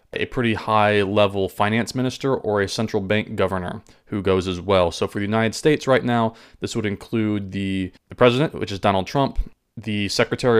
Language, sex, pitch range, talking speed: English, male, 100-120 Hz, 185 wpm